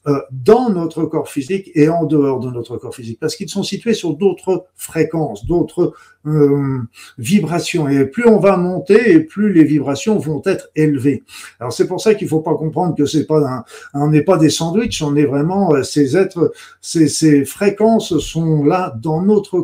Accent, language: French, French